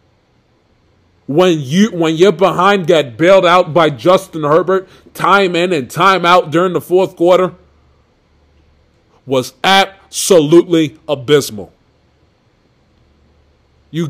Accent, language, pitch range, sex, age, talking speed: American, English, 140-180 Hz, male, 20-39, 100 wpm